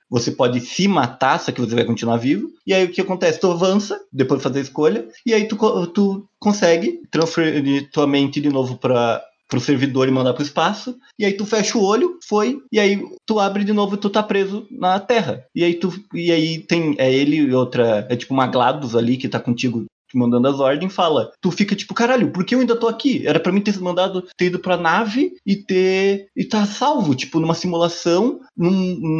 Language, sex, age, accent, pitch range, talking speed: Portuguese, male, 20-39, Brazilian, 145-205 Hz, 220 wpm